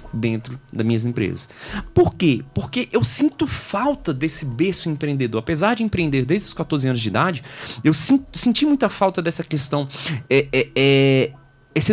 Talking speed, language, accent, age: 160 wpm, Portuguese, Brazilian, 20-39